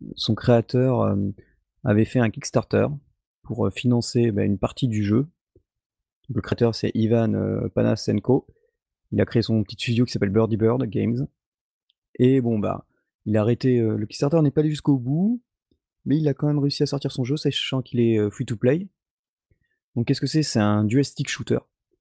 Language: French